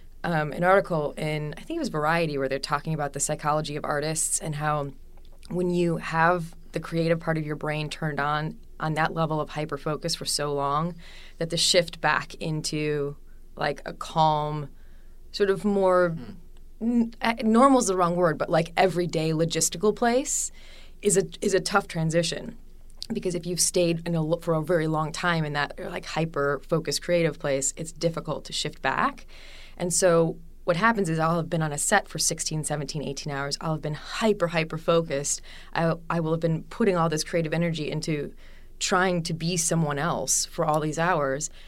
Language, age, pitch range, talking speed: English, 20-39, 150-180 Hz, 190 wpm